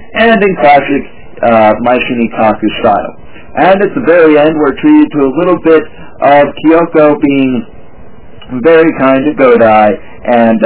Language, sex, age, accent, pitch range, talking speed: English, male, 40-59, American, 120-160 Hz, 140 wpm